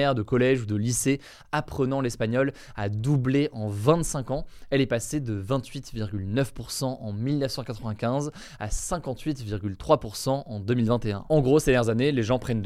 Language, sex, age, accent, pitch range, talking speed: French, male, 20-39, French, 115-145 Hz, 145 wpm